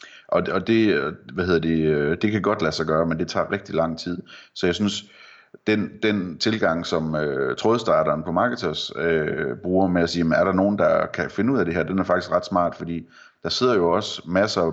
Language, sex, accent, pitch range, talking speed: Danish, male, native, 80-95 Hz, 220 wpm